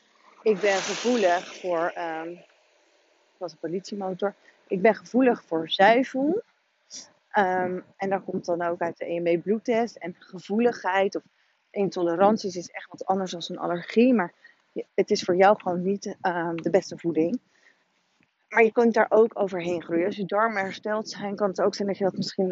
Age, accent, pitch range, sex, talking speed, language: 30-49, Dutch, 175-220 Hz, female, 175 wpm, Dutch